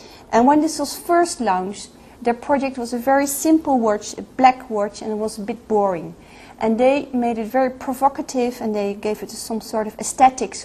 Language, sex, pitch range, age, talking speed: French, female, 210-255 Hz, 40-59, 205 wpm